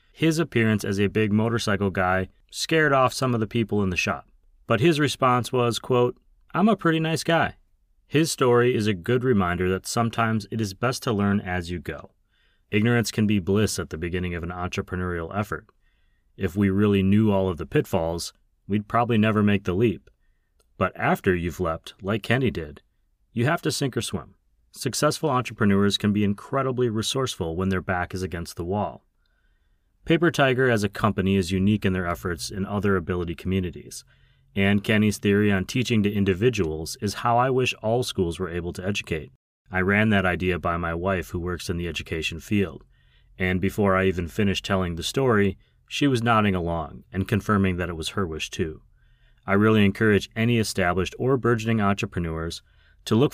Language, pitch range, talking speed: English, 95-115 Hz, 190 wpm